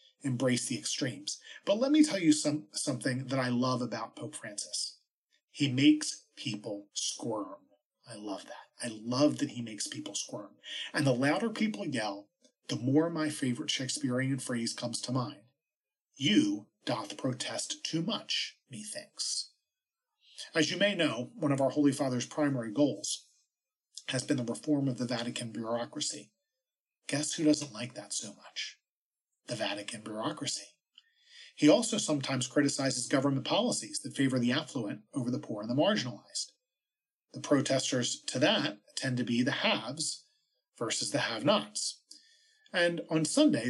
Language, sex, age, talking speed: English, male, 40-59, 150 wpm